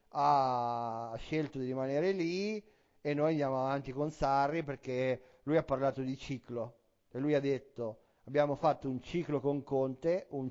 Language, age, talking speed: Italian, 40-59, 160 wpm